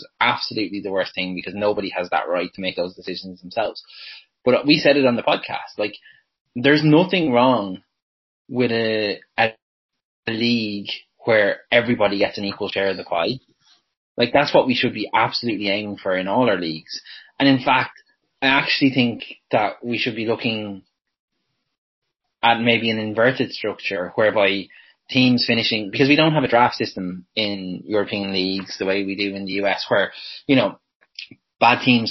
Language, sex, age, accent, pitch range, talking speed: English, male, 20-39, Irish, 95-115 Hz, 175 wpm